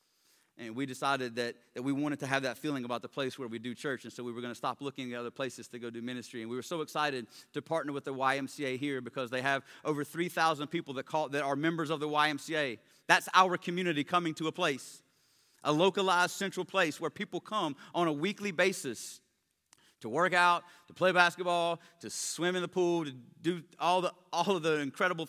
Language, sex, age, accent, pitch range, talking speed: English, male, 30-49, American, 135-175 Hz, 225 wpm